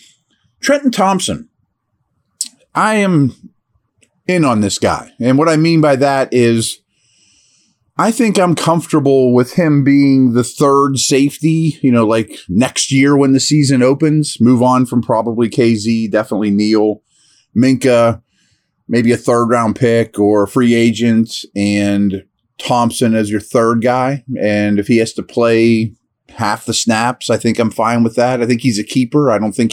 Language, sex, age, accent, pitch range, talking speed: English, male, 30-49, American, 110-135 Hz, 160 wpm